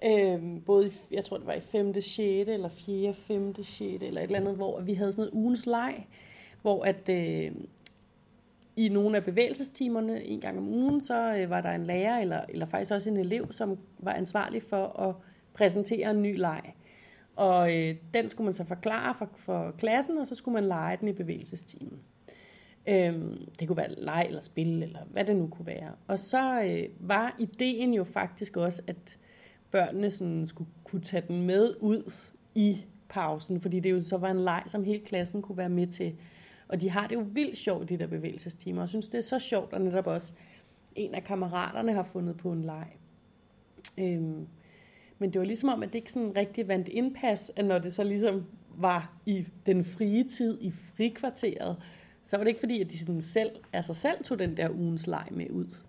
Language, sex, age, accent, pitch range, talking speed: Danish, female, 30-49, native, 175-215 Hz, 205 wpm